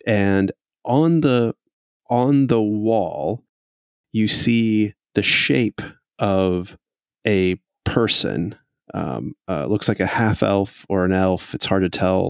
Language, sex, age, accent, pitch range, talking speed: English, male, 30-49, American, 95-110 Hz, 130 wpm